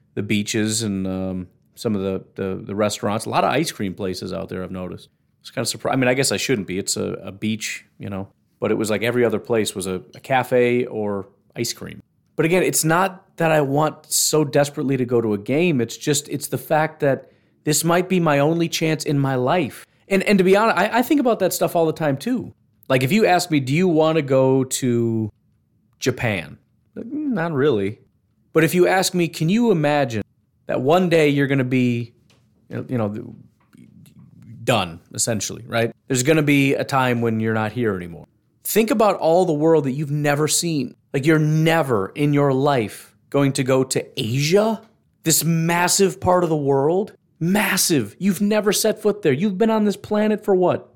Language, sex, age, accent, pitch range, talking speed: English, male, 40-59, American, 115-175 Hz, 210 wpm